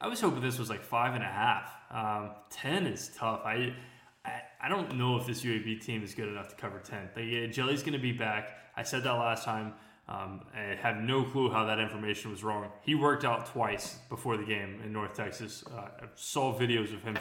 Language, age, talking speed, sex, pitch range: English, 20-39, 230 wpm, male, 105-130 Hz